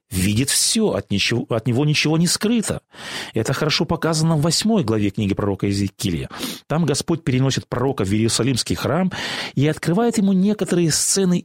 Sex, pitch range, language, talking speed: male, 125-175 Hz, Russian, 155 wpm